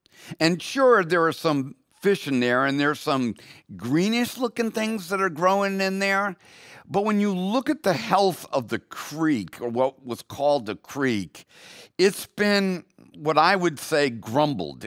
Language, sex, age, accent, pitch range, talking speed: English, male, 50-69, American, 120-175 Hz, 165 wpm